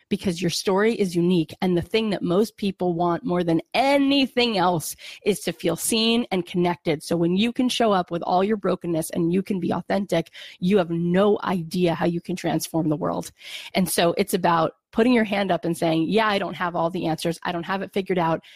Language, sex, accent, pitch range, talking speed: English, female, American, 175-215 Hz, 225 wpm